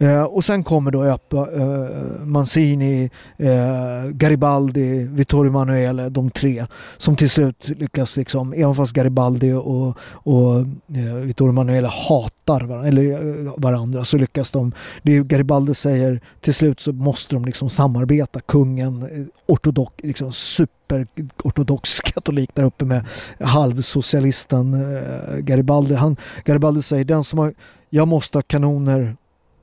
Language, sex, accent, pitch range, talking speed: Swedish, male, native, 130-150 Hz, 135 wpm